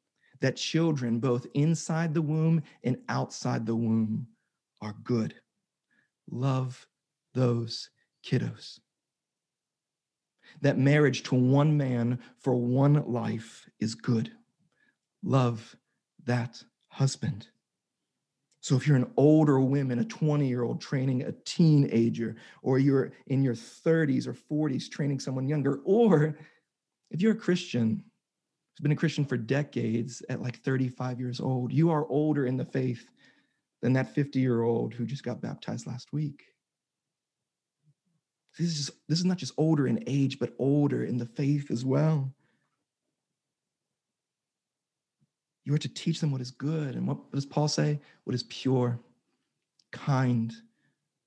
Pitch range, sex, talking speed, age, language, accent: 125-150 Hz, male, 135 wpm, 40-59, English, American